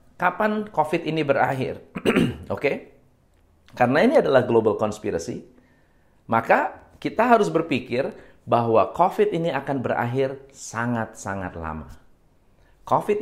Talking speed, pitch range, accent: 105 wpm, 125-185 Hz, native